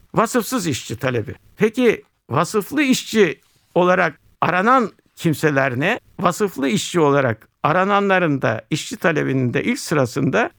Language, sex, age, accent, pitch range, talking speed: Turkish, male, 60-79, native, 135-195 Hz, 115 wpm